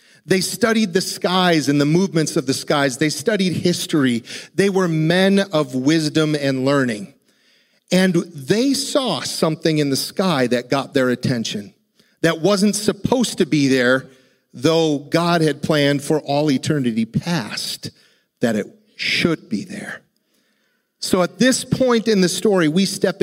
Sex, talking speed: male, 150 wpm